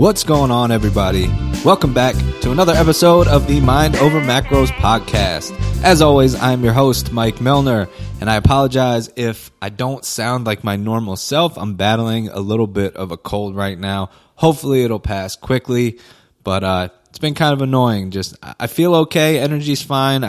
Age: 20-39